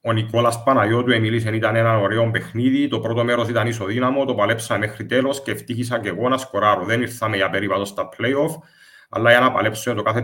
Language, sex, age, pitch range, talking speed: English, male, 30-49, 110-130 Hz, 210 wpm